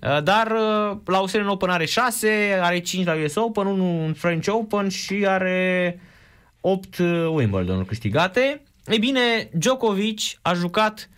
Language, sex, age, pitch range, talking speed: Romanian, male, 20-39, 120-190 Hz, 130 wpm